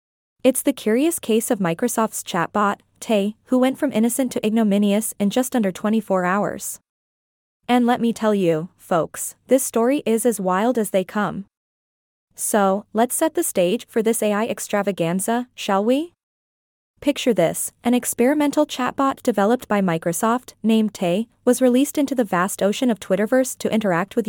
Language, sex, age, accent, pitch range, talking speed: English, female, 20-39, American, 200-245 Hz, 160 wpm